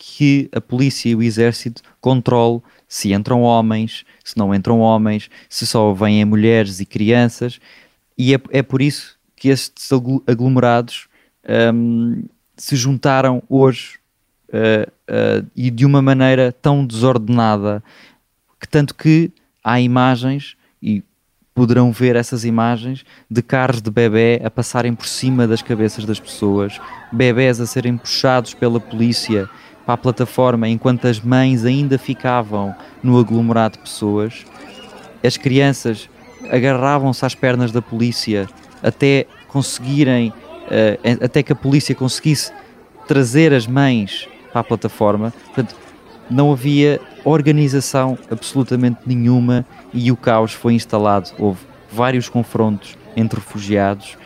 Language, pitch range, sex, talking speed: Portuguese, 115-130 Hz, male, 130 wpm